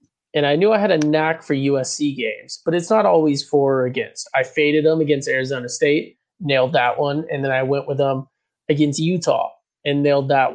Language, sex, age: English, male, 20-39